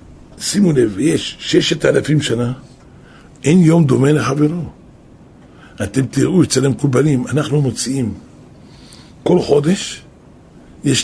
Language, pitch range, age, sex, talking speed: Hebrew, 130-160 Hz, 60-79, male, 110 wpm